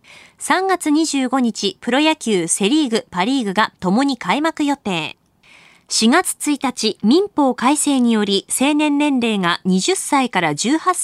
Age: 20-39